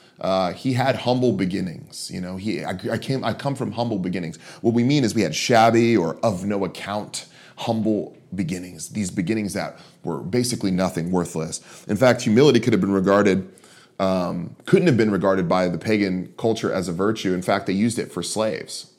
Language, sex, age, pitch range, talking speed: English, male, 30-49, 90-110 Hz, 195 wpm